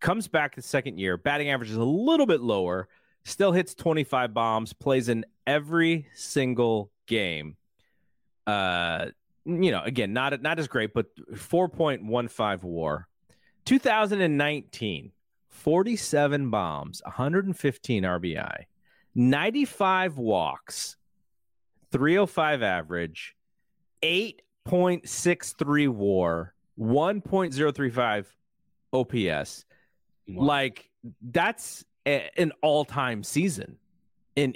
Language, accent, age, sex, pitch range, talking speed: English, American, 30-49, male, 110-165 Hz, 90 wpm